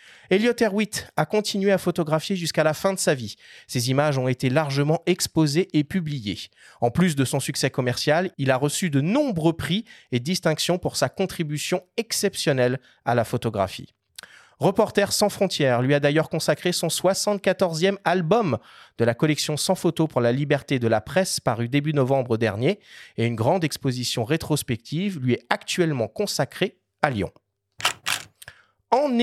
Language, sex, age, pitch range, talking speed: French, male, 30-49, 140-195 Hz, 160 wpm